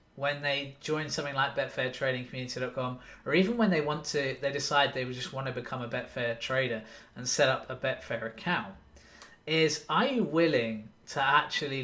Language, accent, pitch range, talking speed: English, British, 125-165 Hz, 170 wpm